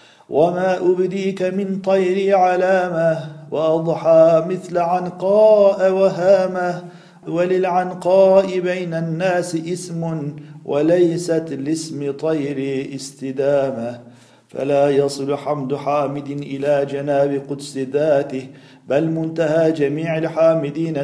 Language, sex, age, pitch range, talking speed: Turkish, male, 50-69, 140-175 Hz, 85 wpm